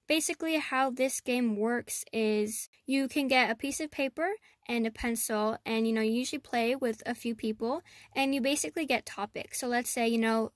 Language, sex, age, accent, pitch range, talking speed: English, female, 10-29, American, 220-250 Hz, 205 wpm